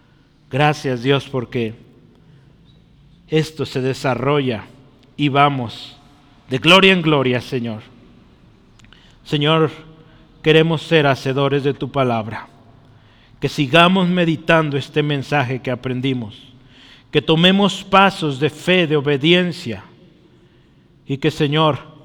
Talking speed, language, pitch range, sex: 100 wpm, Spanish, 125-160 Hz, male